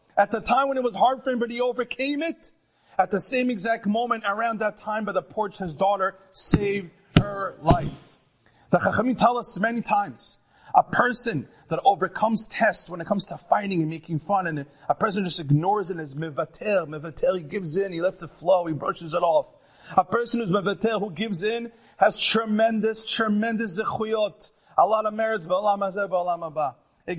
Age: 30-49